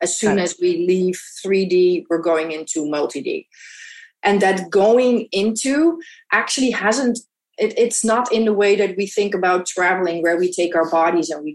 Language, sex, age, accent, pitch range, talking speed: English, female, 30-49, Dutch, 170-215 Hz, 170 wpm